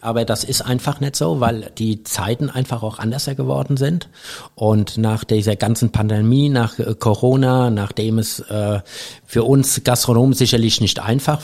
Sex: male